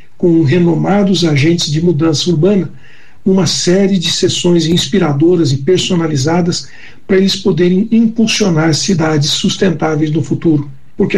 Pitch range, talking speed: 160-195 Hz, 120 wpm